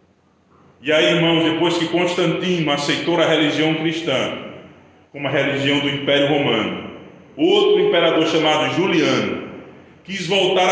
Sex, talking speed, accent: male, 125 wpm, Brazilian